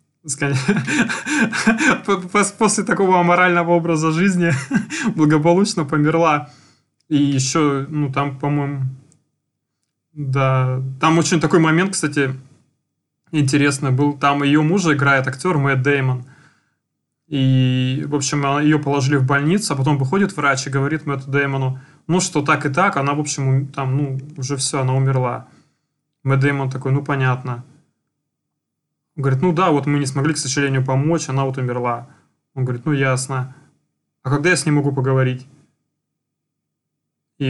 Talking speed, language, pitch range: 140 wpm, Russian, 135-155 Hz